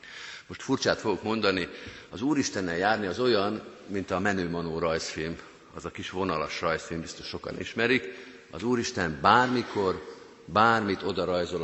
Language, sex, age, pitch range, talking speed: Hungarian, male, 50-69, 95-130 Hz, 140 wpm